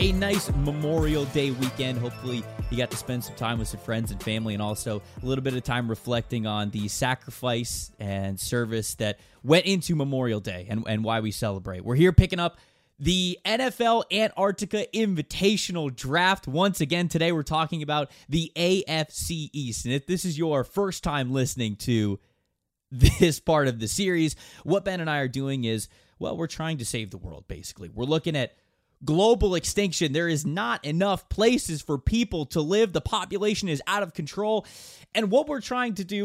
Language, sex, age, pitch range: English, male, 20-39, 115-175 Hz